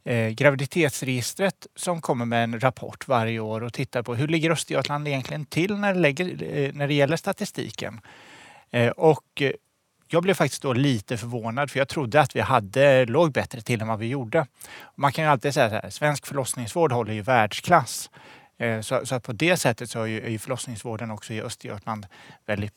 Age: 30-49